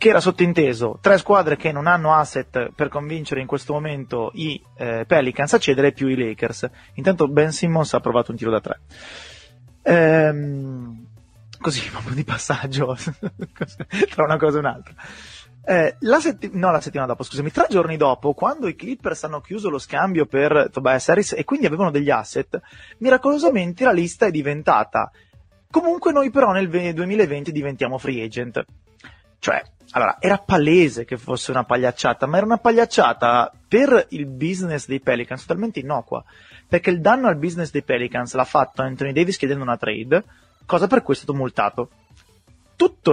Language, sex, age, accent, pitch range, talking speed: Italian, male, 30-49, native, 125-175 Hz, 165 wpm